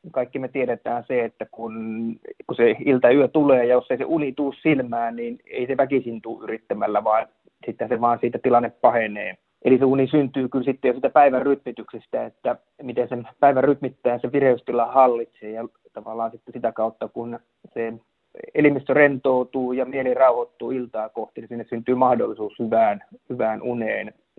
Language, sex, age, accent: Finnish, male, 30-49, native